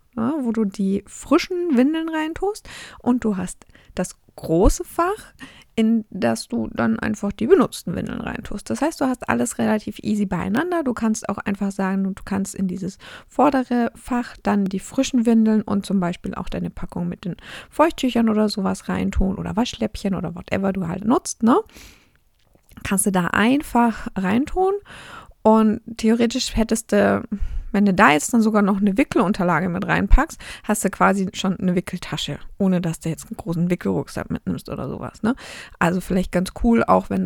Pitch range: 180-230 Hz